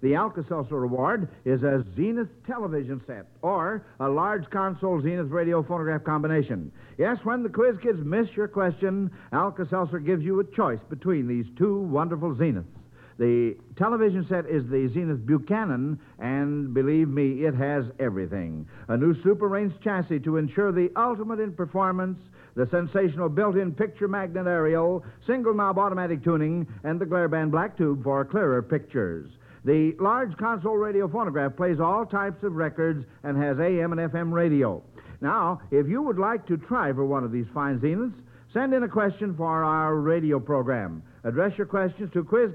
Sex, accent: male, American